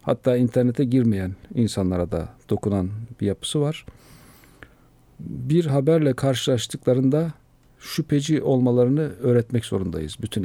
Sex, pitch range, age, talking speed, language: male, 110-135 Hz, 50-69, 100 wpm, Turkish